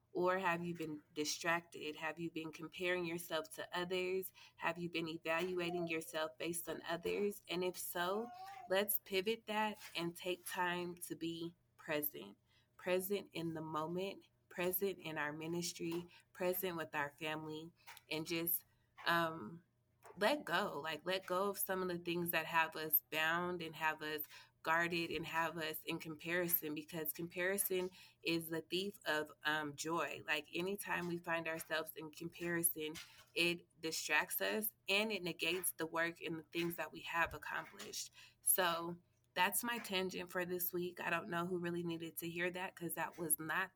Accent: American